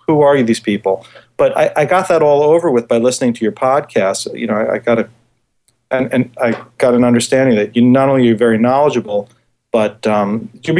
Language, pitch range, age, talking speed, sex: English, 110-130 Hz, 40-59, 220 wpm, male